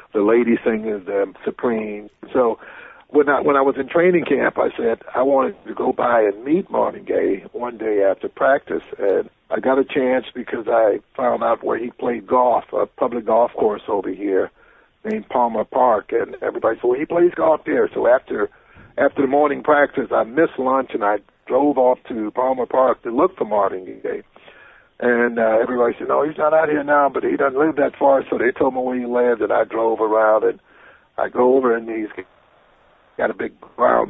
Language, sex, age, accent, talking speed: English, male, 60-79, American, 205 wpm